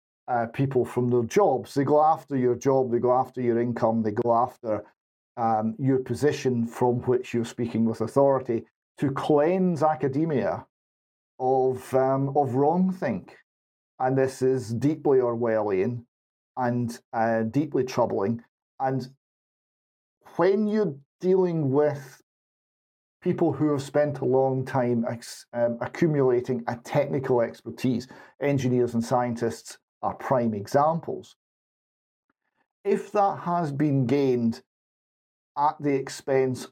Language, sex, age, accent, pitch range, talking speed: English, male, 40-59, British, 115-140 Hz, 120 wpm